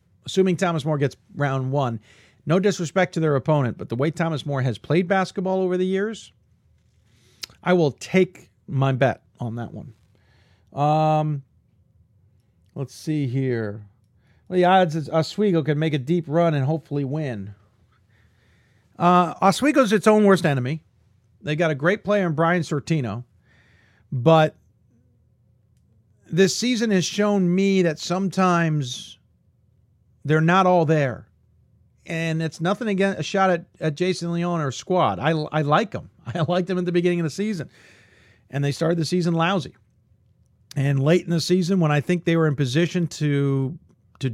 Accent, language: American, English